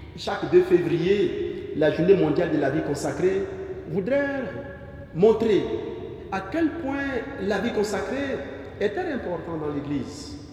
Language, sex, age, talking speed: French, male, 50-69, 130 wpm